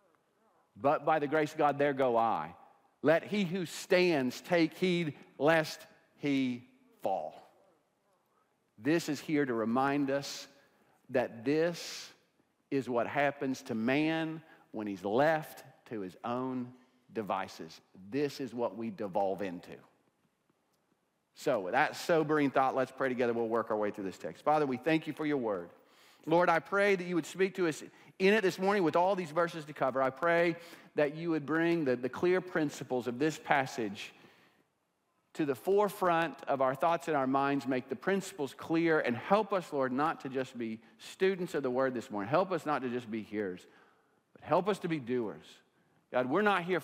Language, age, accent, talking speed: English, 50-69, American, 180 wpm